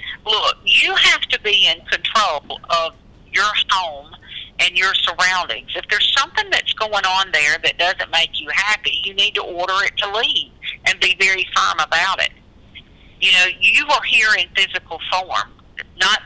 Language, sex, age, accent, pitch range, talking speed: English, female, 50-69, American, 165-220 Hz, 175 wpm